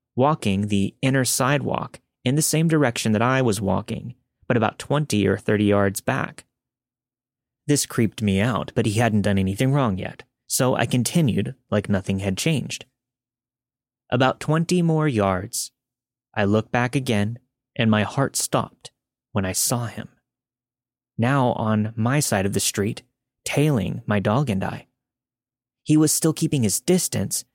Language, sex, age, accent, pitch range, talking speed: English, male, 30-49, American, 105-135 Hz, 155 wpm